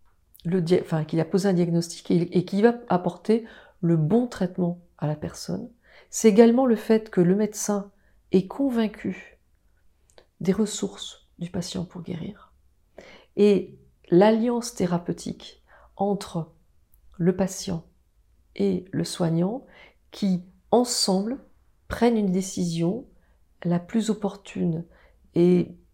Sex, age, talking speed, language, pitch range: female, 40-59, 120 wpm, French, 175-210 Hz